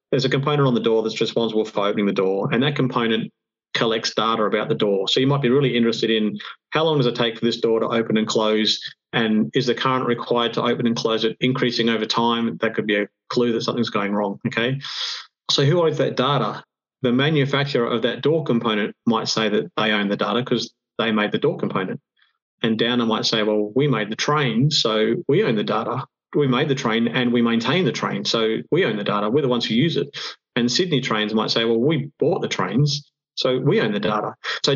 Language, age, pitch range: English, 30-49, 110-130 Hz